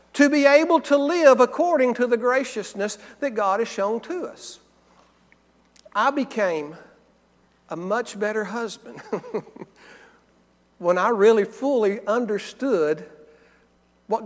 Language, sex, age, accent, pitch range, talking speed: English, male, 60-79, American, 175-270 Hz, 115 wpm